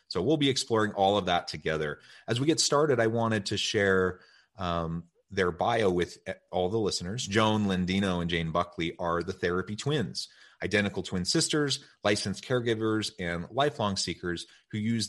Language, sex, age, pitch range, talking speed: English, male, 30-49, 90-110 Hz, 165 wpm